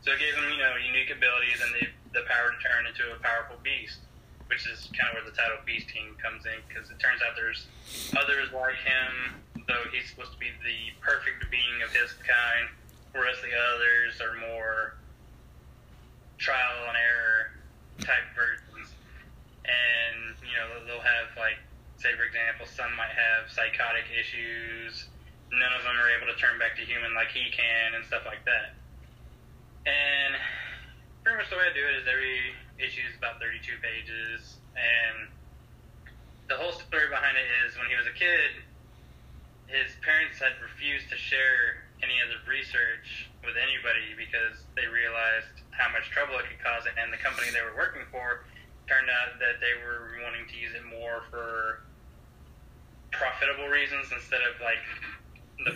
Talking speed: 175 wpm